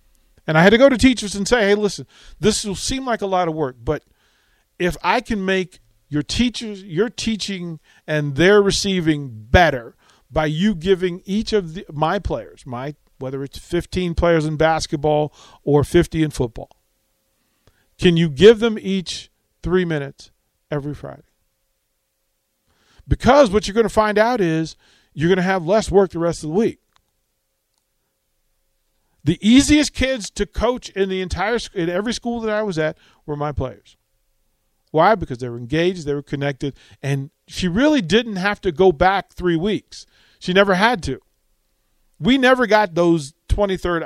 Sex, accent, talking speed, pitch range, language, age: male, American, 170 wpm, 135-205 Hz, English, 50-69